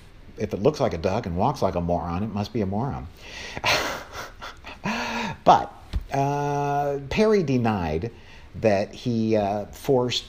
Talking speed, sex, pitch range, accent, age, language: 140 wpm, male, 85-120 Hz, American, 50-69, English